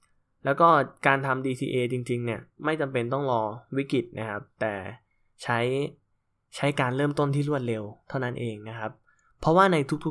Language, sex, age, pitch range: Thai, male, 10-29, 110-140 Hz